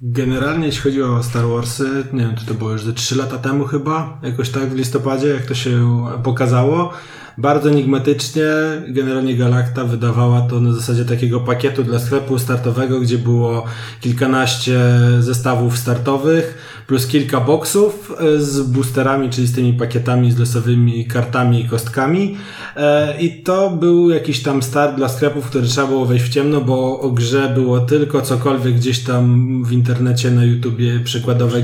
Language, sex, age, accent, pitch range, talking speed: Polish, male, 20-39, native, 125-145 Hz, 160 wpm